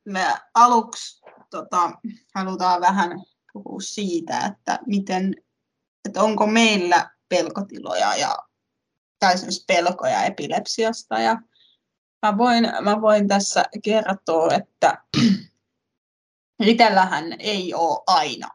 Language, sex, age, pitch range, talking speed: Finnish, female, 20-39, 185-230 Hz, 95 wpm